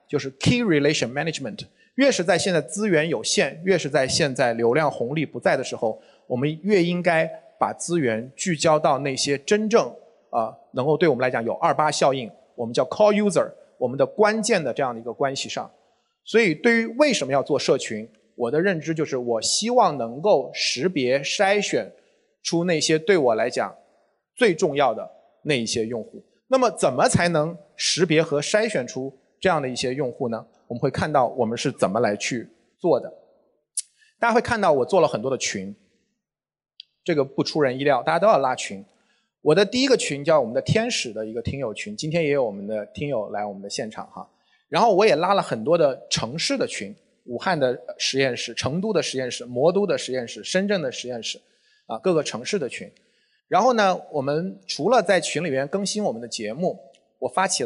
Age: 30-49